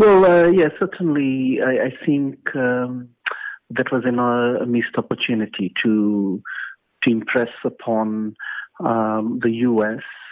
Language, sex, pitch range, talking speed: English, male, 110-130 Hz, 130 wpm